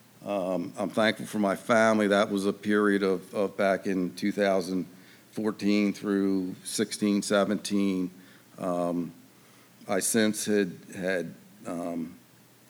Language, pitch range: English, 100-115 Hz